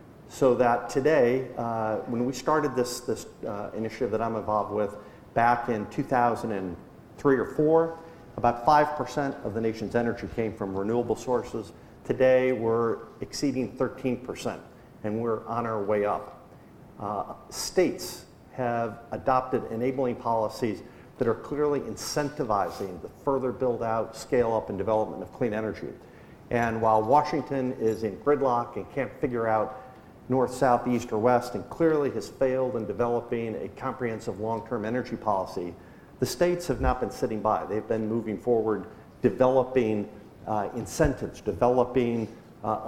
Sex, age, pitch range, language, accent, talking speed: male, 50-69, 110-130 Hz, English, American, 140 wpm